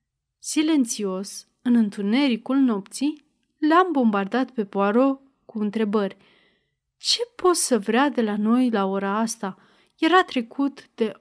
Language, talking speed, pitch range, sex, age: Romanian, 130 wpm, 215-270 Hz, female, 30-49